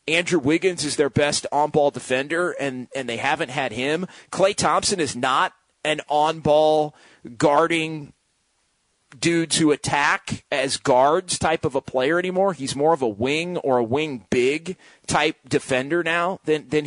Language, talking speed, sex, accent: English, 155 wpm, male, American